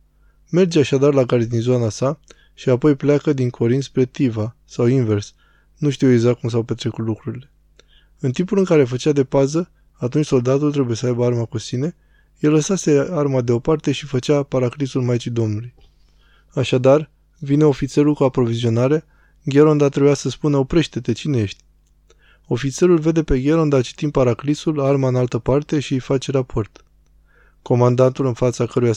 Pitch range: 120-145 Hz